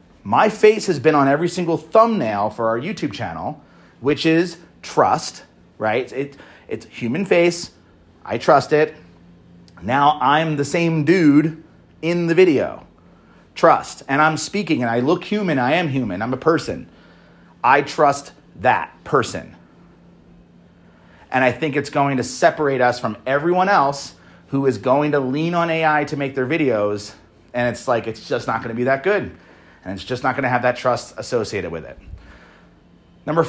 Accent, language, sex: American, English, male